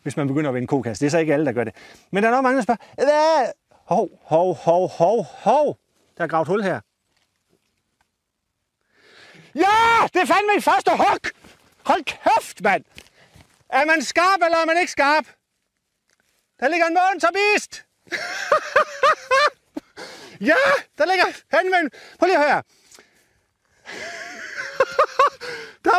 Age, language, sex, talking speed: 30-49, Danish, male, 150 wpm